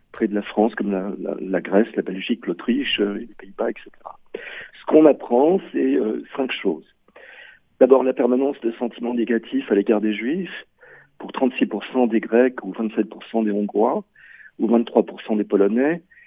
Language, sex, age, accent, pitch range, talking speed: Italian, male, 40-59, French, 115-135 Hz, 155 wpm